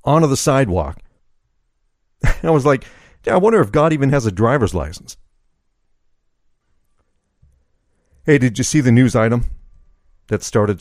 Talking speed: 135 wpm